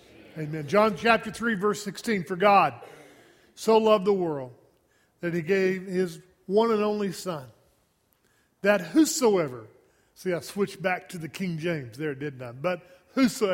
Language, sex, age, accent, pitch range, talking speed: English, male, 40-59, American, 160-210 Hz, 155 wpm